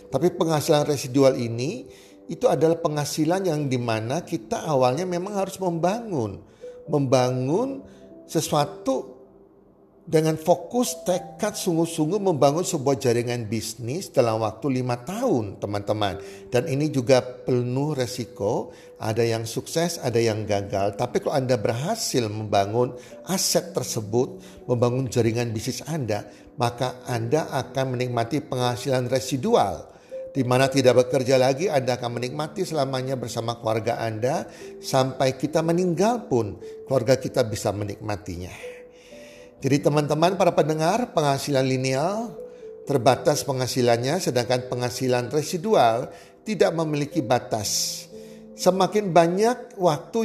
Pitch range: 120-165 Hz